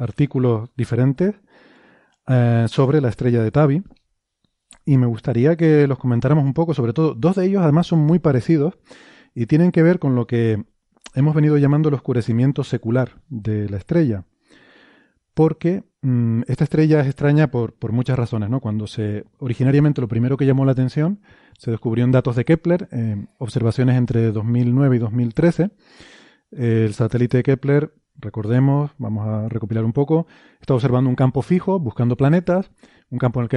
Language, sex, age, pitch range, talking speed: Spanish, male, 30-49, 120-155 Hz, 170 wpm